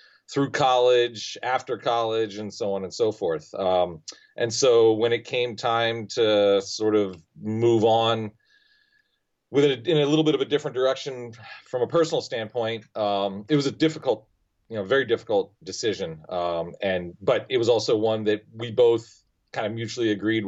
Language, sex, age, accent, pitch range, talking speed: English, male, 30-49, American, 95-120 Hz, 175 wpm